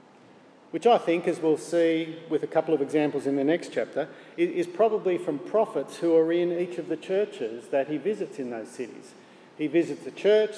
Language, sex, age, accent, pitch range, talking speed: English, male, 50-69, Australian, 150-185 Hz, 205 wpm